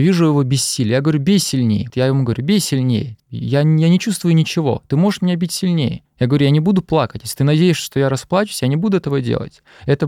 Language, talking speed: Russian, 240 wpm